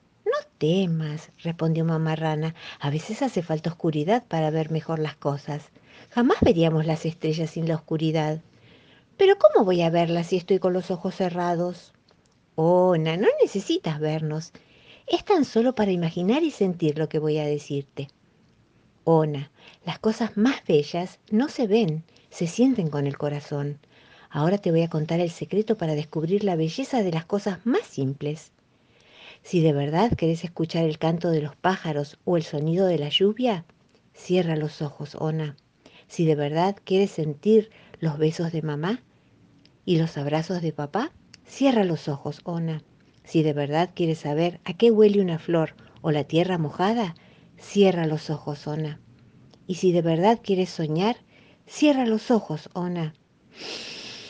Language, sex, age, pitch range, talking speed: Spanish, female, 50-69, 155-190 Hz, 160 wpm